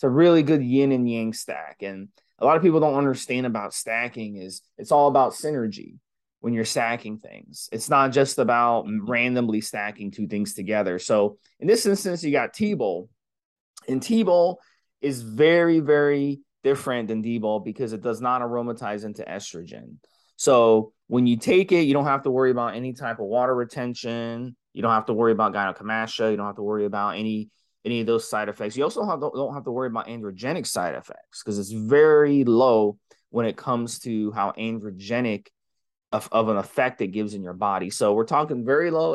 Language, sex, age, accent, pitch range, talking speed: English, male, 20-39, American, 110-140 Hz, 195 wpm